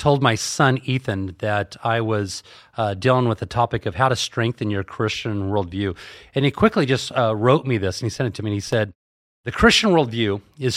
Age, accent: 30-49, American